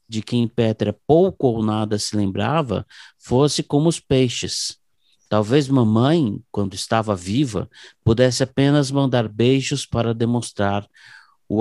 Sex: male